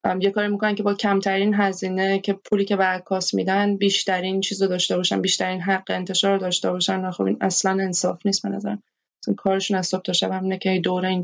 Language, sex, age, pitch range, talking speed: Persian, female, 20-39, 180-195 Hz, 210 wpm